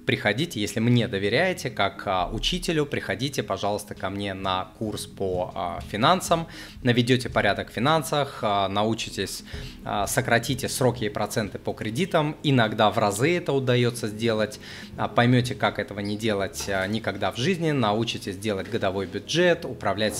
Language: Russian